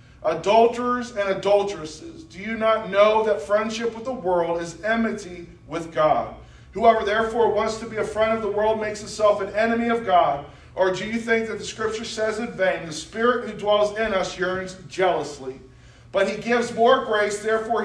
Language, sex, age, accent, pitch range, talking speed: English, male, 40-59, American, 170-220 Hz, 190 wpm